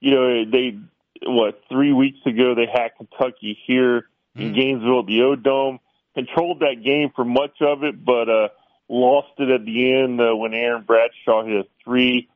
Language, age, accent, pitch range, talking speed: English, 40-59, American, 115-135 Hz, 180 wpm